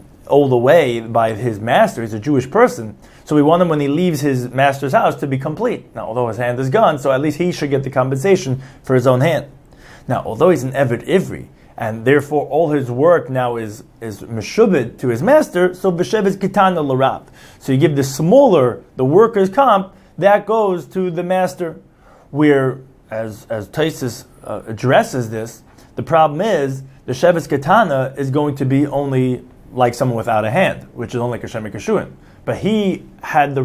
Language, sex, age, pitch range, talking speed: English, male, 30-49, 125-160 Hz, 195 wpm